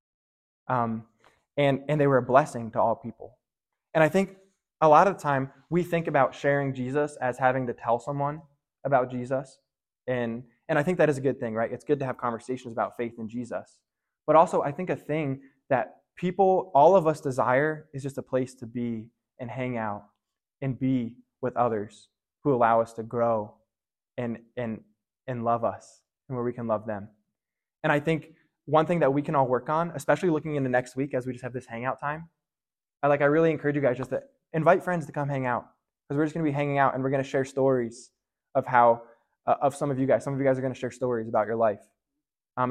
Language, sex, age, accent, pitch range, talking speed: English, male, 20-39, American, 120-145 Hz, 230 wpm